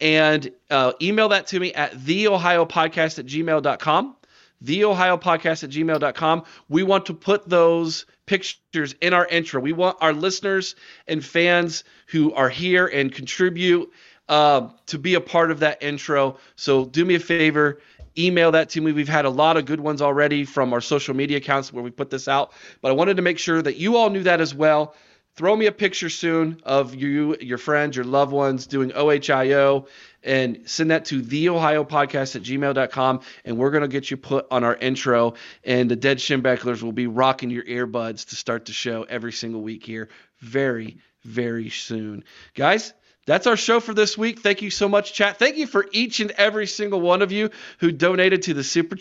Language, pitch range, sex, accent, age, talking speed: English, 135-180 Hz, male, American, 40-59, 195 wpm